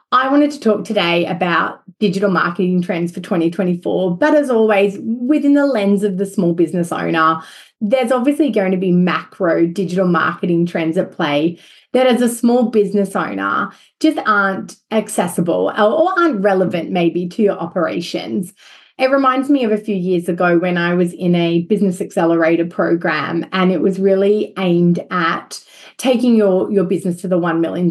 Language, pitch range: English, 180-230 Hz